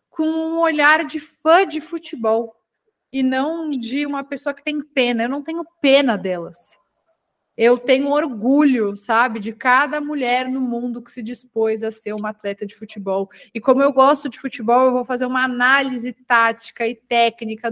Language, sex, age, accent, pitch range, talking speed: English, female, 20-39, Brazilian, 215-260 Hz, 175 wpm